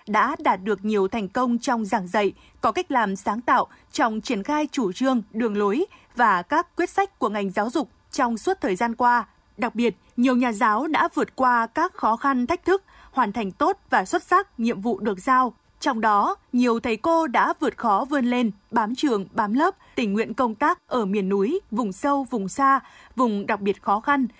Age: 20-39